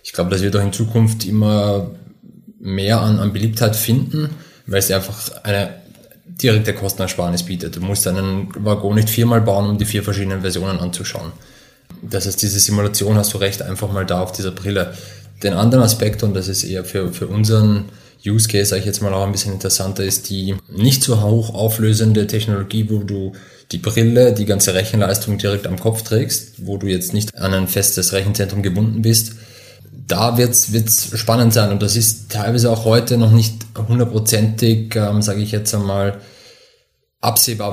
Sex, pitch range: male, 100-110 Hz